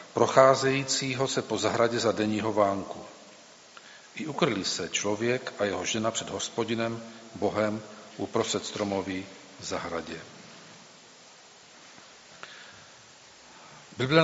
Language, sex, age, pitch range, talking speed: Czech, male, 40-59, 105-115 Hz, 90 wpm